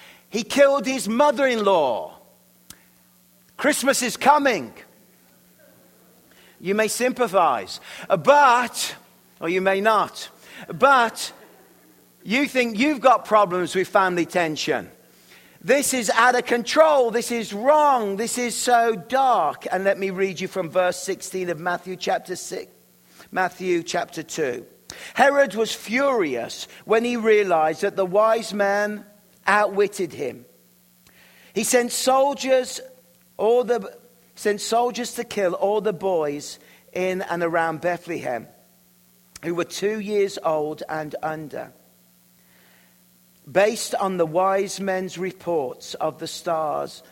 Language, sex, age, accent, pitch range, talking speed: English, male, 50-69, British, 170-225 Hz, 120 wpm